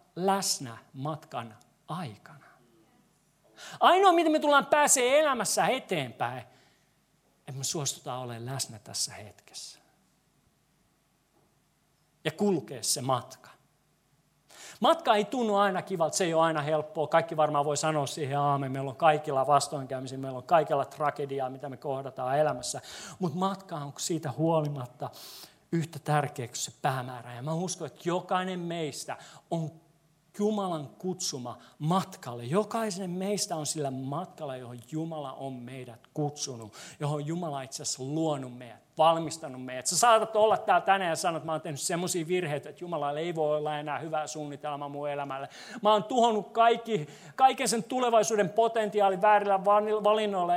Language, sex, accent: Finnish, male, native